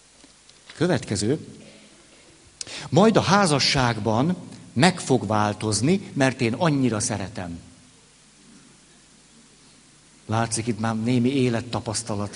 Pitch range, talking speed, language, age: 115-145 Hz, 80 wpm, Hungarian, 60-79